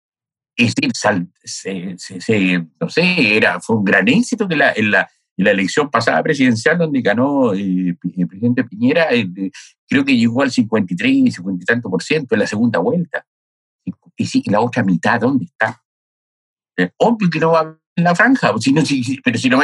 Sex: male